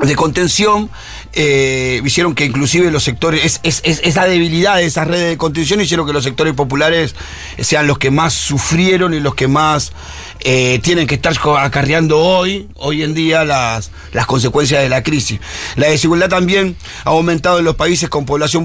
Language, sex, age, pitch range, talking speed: Spanish, male, 40-59, 135-175 Hz, 175 wpm